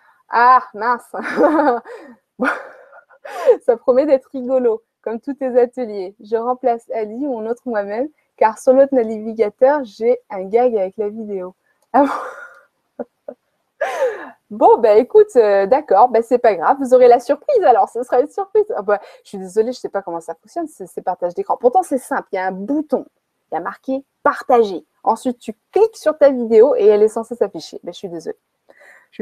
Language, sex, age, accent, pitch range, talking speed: French, female, 20-39, French, 210-295 Hz, 190 wpm